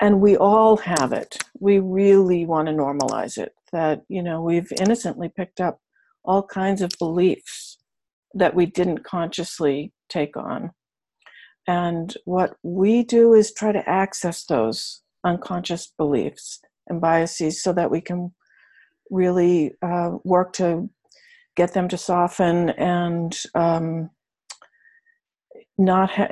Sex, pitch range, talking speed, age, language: female, 170-200 Hz, 130 wpm, 60-79, English